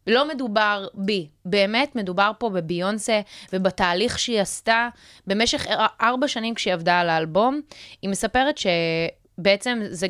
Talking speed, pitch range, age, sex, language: 125 wpm, 180-230 Hz, 20-39, female, Hebrew